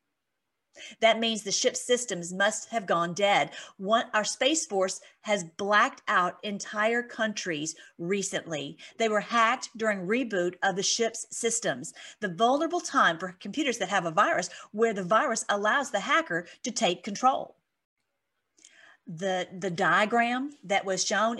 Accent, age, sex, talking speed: American, 40-59, female, 145 wpm